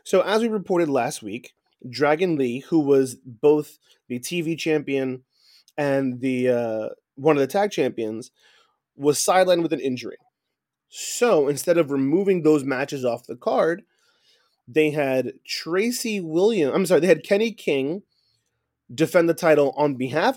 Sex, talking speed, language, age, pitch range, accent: male, 150 wpm, English, 20-39, 135-190 Hz, American